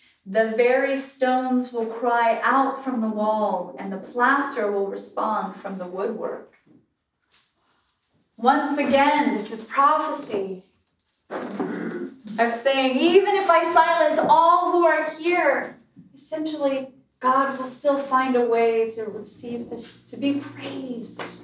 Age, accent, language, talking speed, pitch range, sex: 20-39, American, English, 125 wpm, 210-255 Hz, female